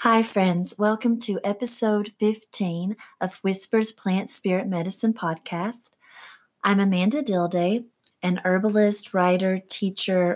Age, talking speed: 30-49, 110 wpm